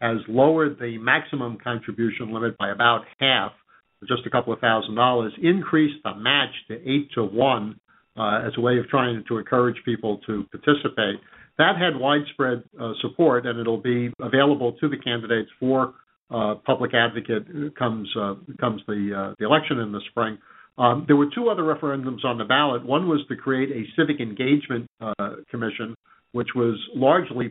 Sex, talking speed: male, 175 wpm